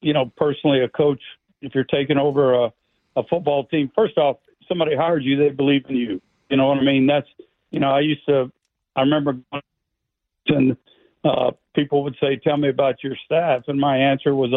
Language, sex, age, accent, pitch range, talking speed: English, male, 50-69, American, 125-145 Hz, 200 wpm